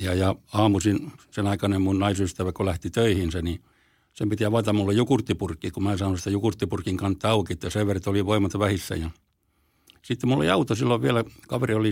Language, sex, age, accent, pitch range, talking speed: Finnish, male, 60-79, native, 95-110 Hz, 190 wpm